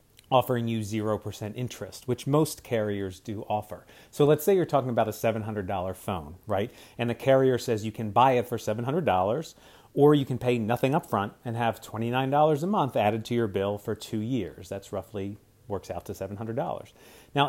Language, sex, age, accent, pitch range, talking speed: English, male, 40-59, American, 105-130 Hz, 185 wpm